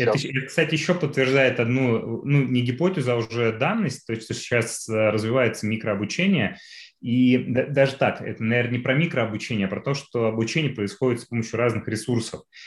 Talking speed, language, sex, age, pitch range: 165 wpm, Russian, male, 20-39, 105-130 Hz